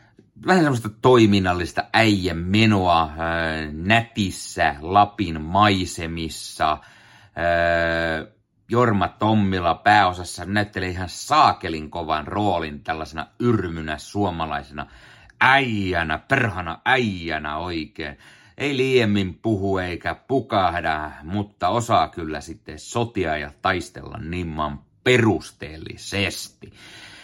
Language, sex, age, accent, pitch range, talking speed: Finnish, male, 30-49, native, 85-110 Hz, 85 wpm